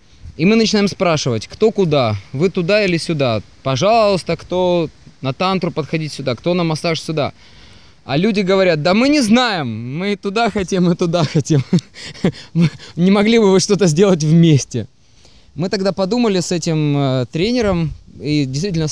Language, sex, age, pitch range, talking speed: Russian, male, 20-39, 135-180 Hz, 155 wpm